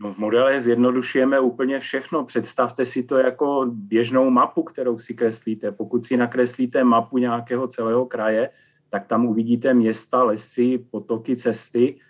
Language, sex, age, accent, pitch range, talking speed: Czech, male, 40-59, native, 115-125 Hz, 140 wpm